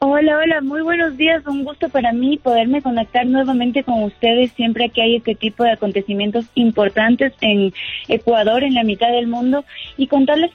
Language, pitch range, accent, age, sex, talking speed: Spanish, 205-255 Hz, Mexican, 20-39, female, 175 wpm